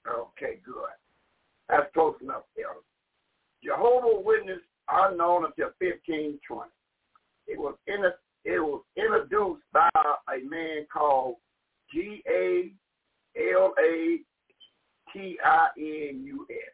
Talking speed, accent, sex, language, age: 85 wpm, American, male, English, 60-79